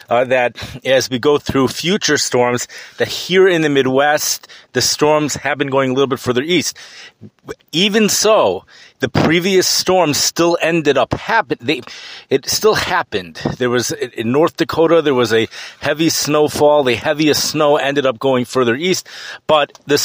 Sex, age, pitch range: male, 40-59, 125-165 Hz